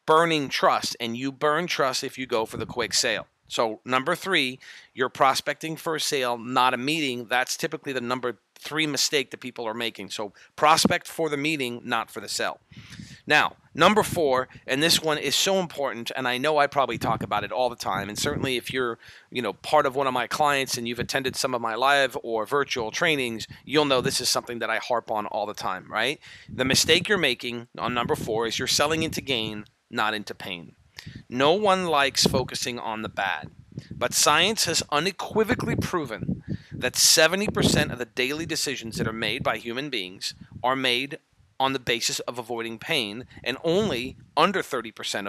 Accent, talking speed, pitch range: American, 195 wpm, 120-150 Hz